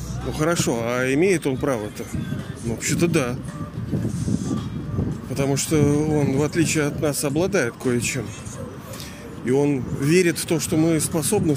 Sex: male